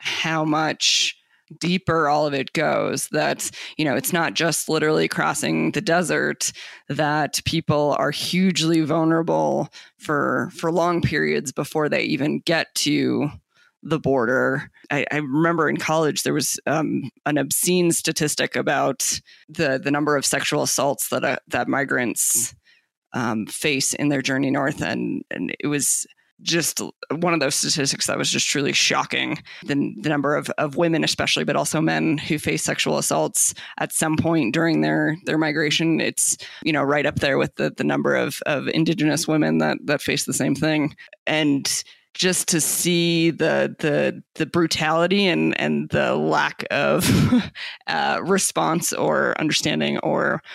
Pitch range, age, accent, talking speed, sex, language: 145-165 Hz, 20-39, American, 160 wpm, female, English